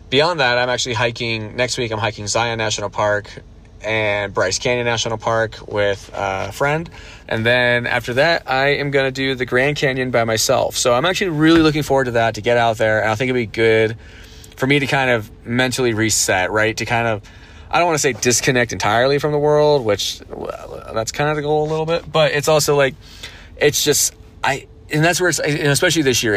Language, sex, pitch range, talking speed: English, male, 110-145 Hz, 220 wpm